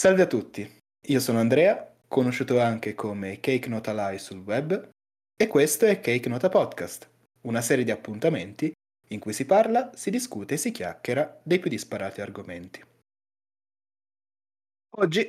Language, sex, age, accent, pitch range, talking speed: Italian, male, 20-39, native, 110-160 Hz, 150 wpm